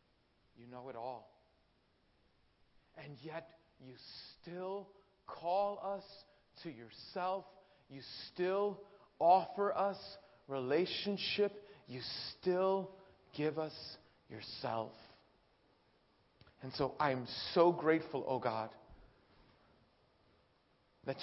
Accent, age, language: American, 40-59, English